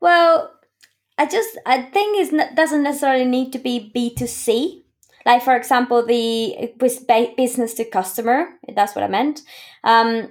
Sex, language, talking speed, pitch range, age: female, English, 145 wpm, 200-255 Hz, 20-39